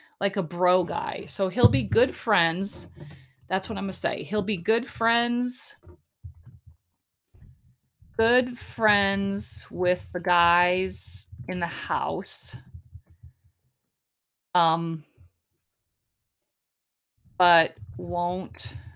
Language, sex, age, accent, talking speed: English, female, 30-49, American, 95 wpm